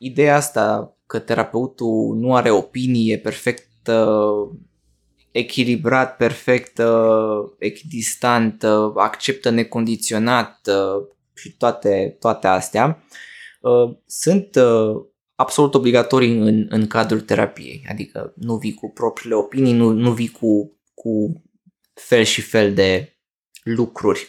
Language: Romanian